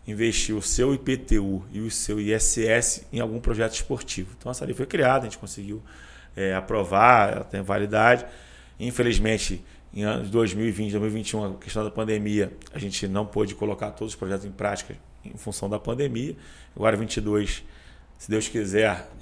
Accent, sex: Brazilian, male